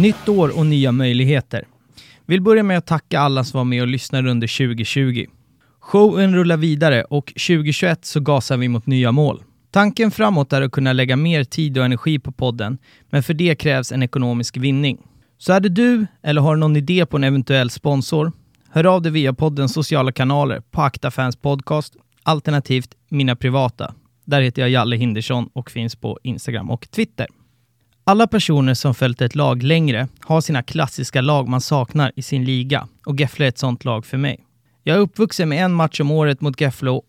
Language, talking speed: Swedish, 190 wpm